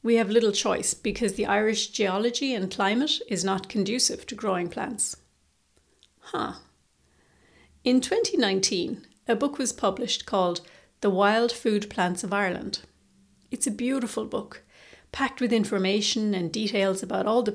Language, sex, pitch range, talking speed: English, female, 190-235 Hz, 145 wpm